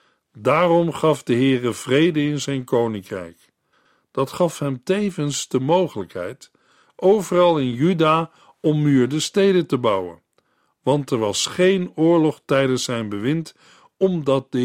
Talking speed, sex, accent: 130 wpm, male, Dutch